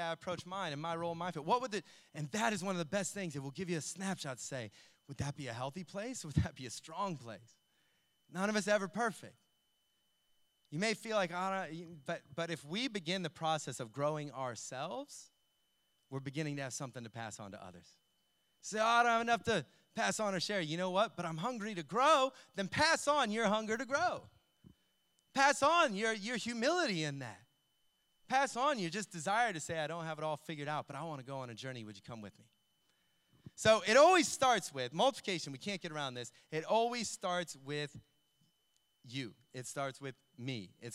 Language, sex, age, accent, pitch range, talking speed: English, male, 30-49, American, 140-215 Hz, 225 wpm